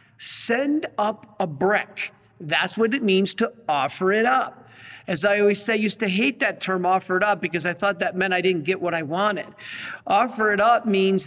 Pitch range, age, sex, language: 180-225 Hz, 50-69, male, English